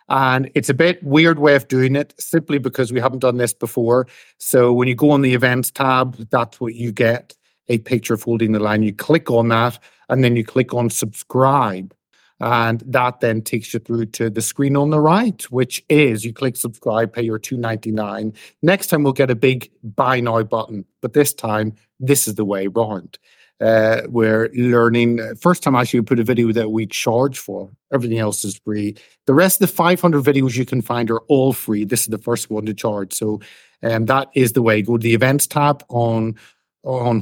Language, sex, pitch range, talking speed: English, male, 115-140 Hz, 210 wpm